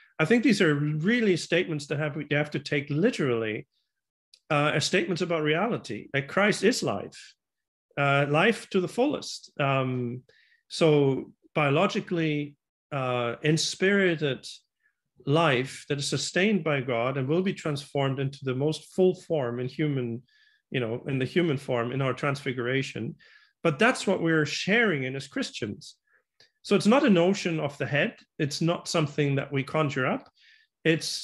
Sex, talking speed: male, 160 wpm